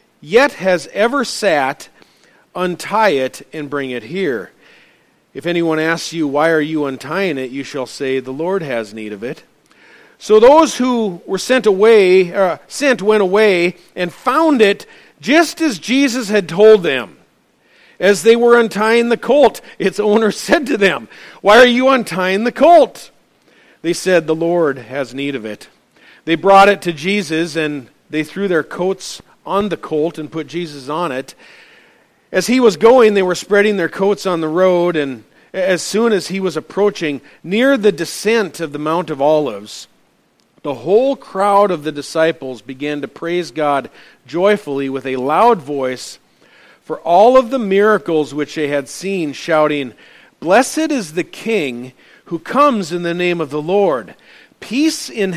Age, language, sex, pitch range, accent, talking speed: 50-69, English, male, 155-215 Hz, American, 170 wpm